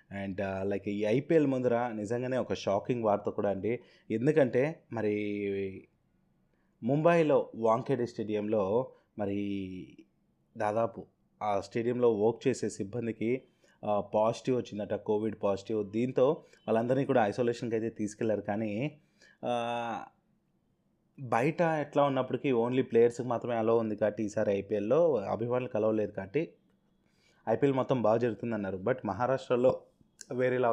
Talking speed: 105 wpm